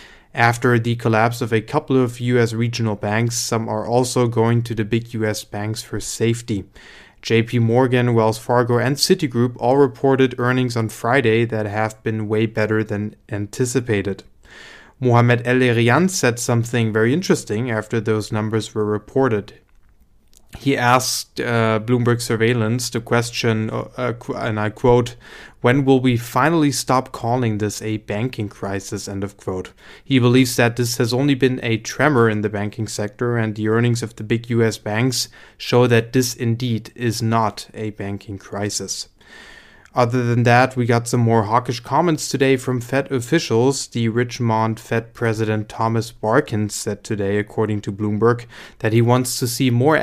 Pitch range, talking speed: 110-125 Hz, 160 wpm